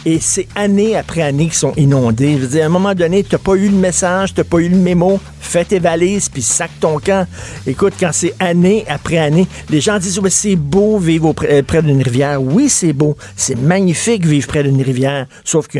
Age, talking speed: 50-69, 230 wpm